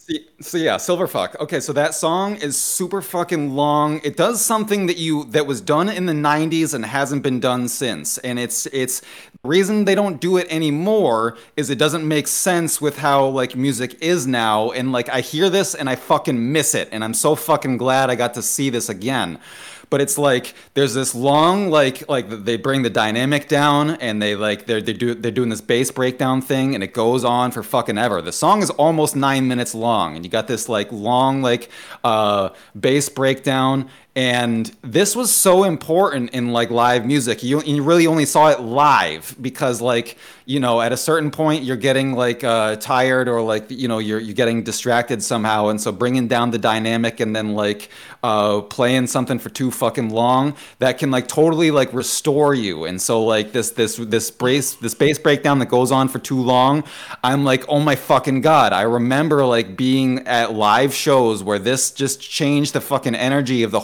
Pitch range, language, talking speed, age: 120-150 Hz, English, 205 wpm, 30-49